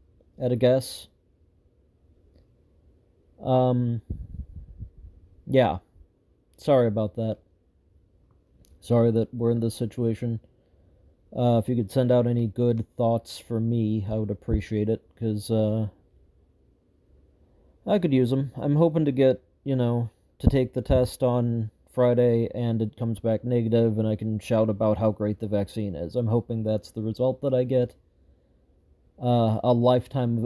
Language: English